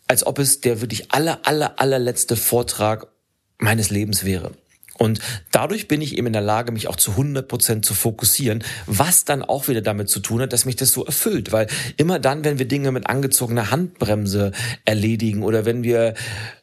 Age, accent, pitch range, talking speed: 40-59, German, 105-135 Hz, 190 wpm